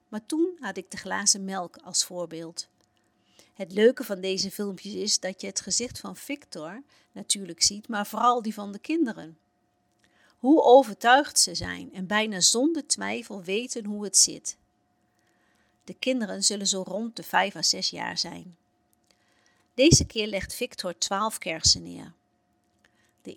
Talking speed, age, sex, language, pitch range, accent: 155 wpm, 50-69, female, Dutch, 190-250 Hz, Dutch